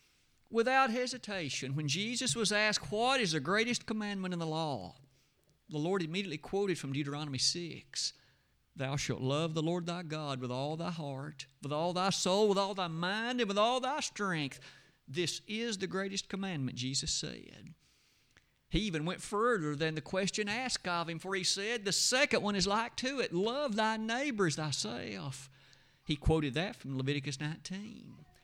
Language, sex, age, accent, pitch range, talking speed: English, male, 50-69, American, 145-205 Hz, 175 wpm